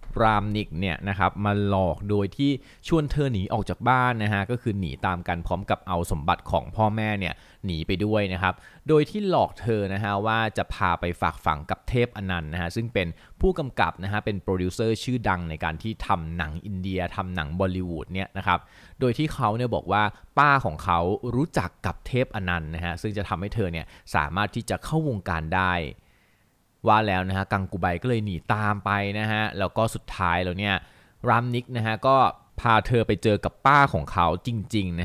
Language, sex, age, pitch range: Thai, male, 20-39, 90-110 Hz